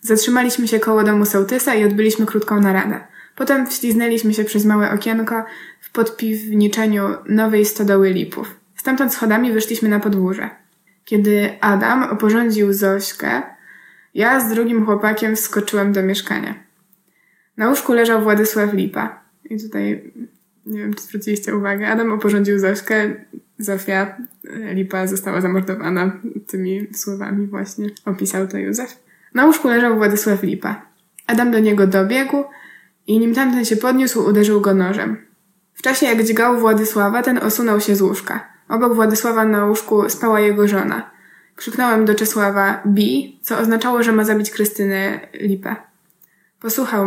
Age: 20-39